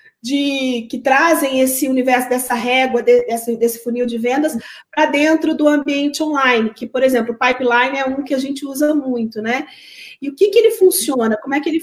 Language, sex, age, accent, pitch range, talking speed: Portuguese, female, 40-59, Brazilian, 250-315 Hz, 205 wpm